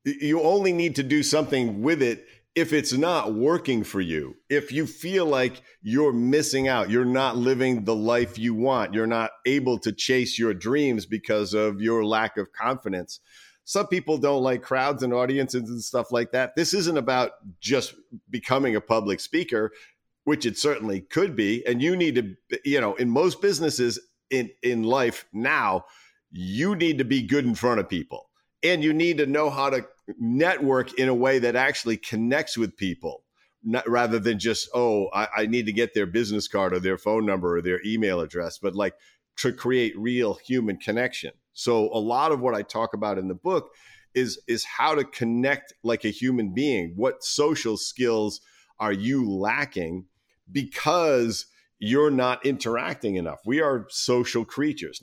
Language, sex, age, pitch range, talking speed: English, male, 50-69, 110-140 Hz, 180 wpm